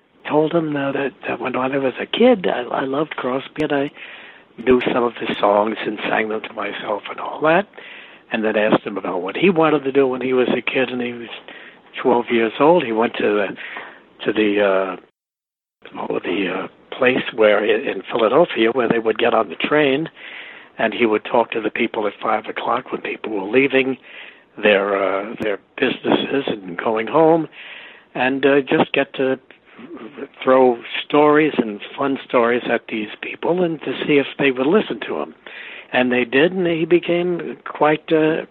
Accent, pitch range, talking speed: American, 115-155 Hz, 185 wpm